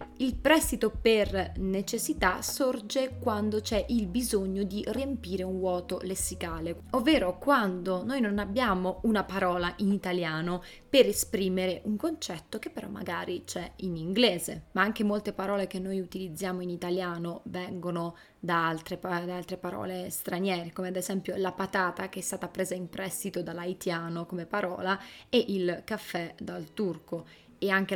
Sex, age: female, 20-39